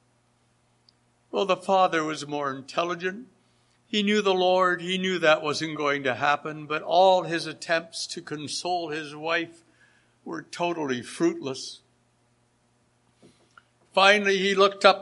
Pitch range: 145-185 Hz